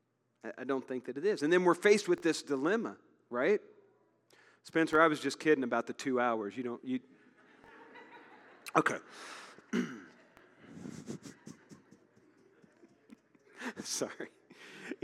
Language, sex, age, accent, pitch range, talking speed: English, male, 40-59, American, 130-180 Hz, 110 wpm